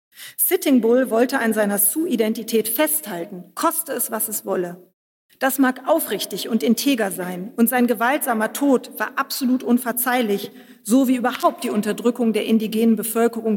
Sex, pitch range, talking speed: female, 210-250 Hz, 150 wpm